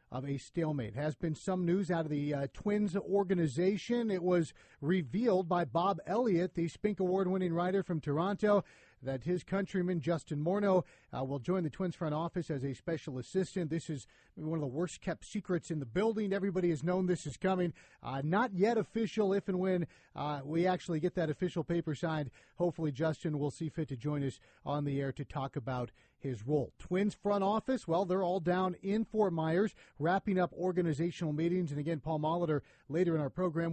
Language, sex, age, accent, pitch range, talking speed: English, male, 40-59, American, 155-190 Hz, 195 wpm